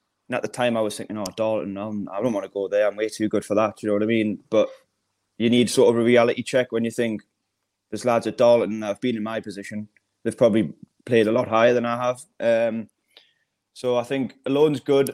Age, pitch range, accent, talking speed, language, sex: 20-39, 110-125 Hz, British, 245 wpm, English, male